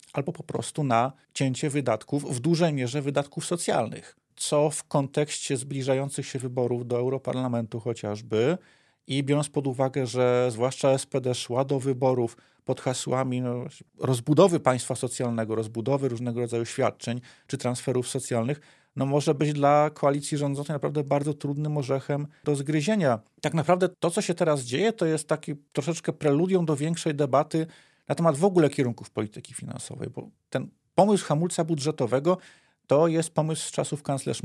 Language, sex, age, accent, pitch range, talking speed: Polish, male, 40-59, native, 125-150 Hz, 150 wpm